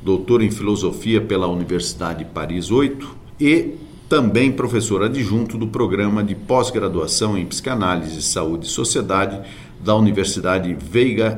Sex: male